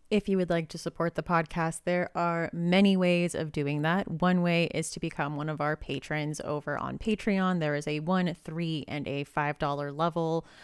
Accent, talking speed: American, 205 wpm